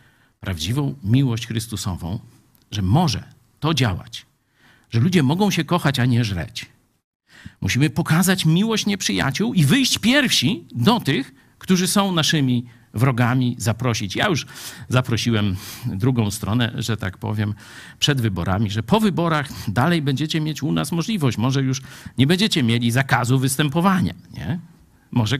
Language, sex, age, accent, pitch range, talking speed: Polish, male, 50-69, native, 110-170 Hz, 130 wpm